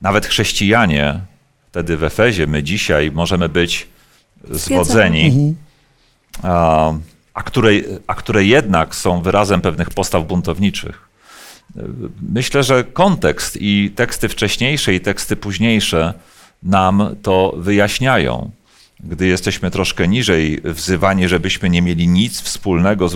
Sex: male